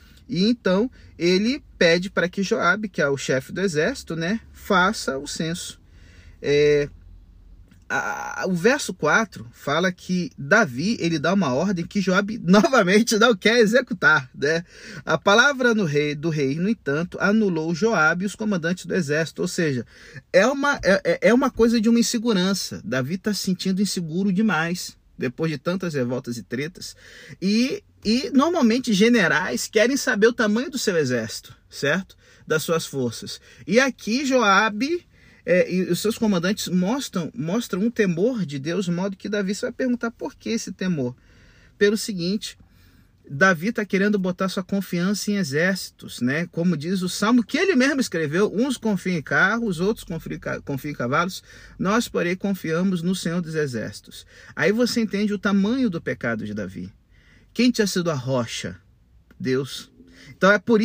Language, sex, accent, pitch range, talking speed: Portuguese, male, Brazilian, 155-220 Hz, 165 wpm